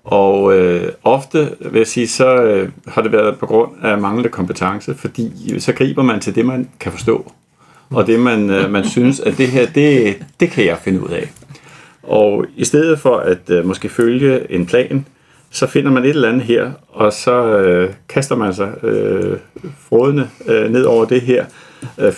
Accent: native